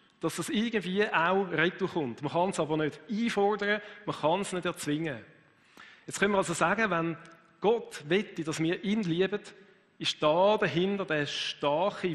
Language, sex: German, male